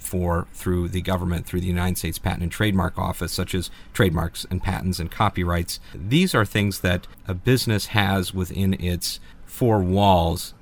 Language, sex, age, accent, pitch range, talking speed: English, male, 50-69, American, 85-100 Hz, 165 wpm